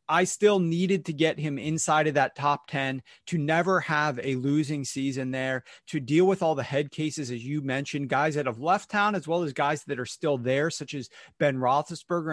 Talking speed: 220 wpm